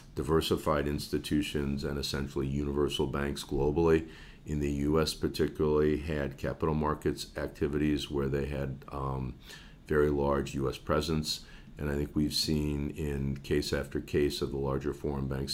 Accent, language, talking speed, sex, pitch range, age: American, English, 145 wpm, male, 65-75 Hz, 50-69